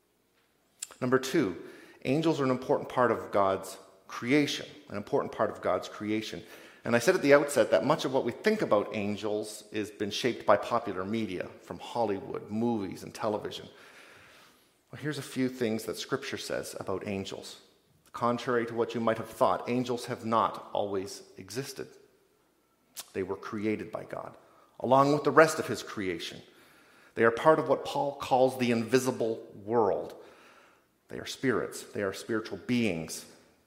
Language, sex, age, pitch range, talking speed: English, male, 40-59, 100-130 Hz, 165 wpm